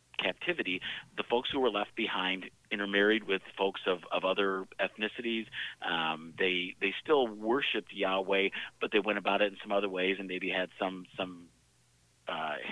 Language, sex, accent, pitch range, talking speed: English, male, American, 95-115 Hz, 165 wpm